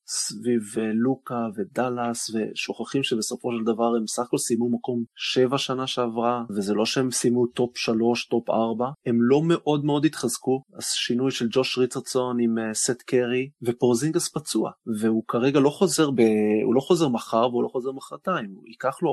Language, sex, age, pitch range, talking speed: Hebrew, male, 20-39, 115-130 Hz, 160 wpm